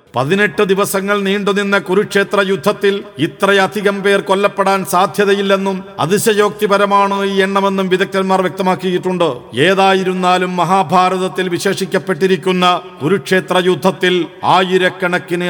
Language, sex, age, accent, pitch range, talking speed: Malayalam, male, 50-69, native, 185-200 Hz, 75 wpm